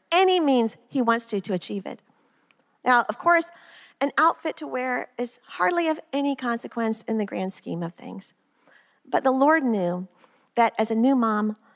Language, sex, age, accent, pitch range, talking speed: English, female, 40-59, American, 205-260 Hz, 180 wpm